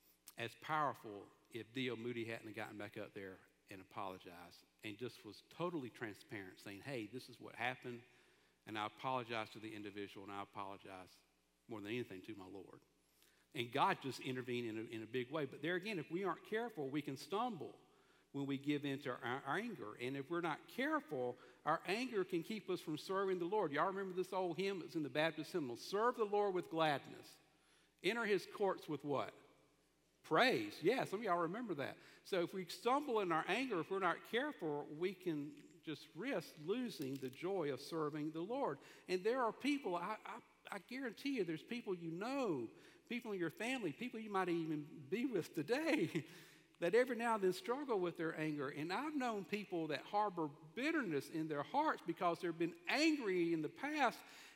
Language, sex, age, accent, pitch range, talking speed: English, male, 50-69, American, 130-205 Hz, 195 wpm